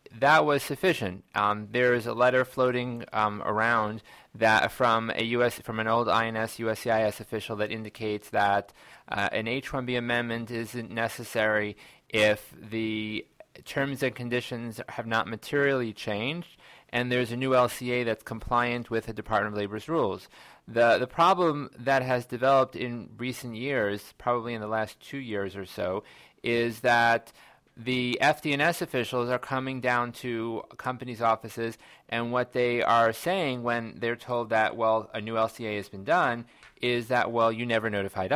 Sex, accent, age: male, American, 30-49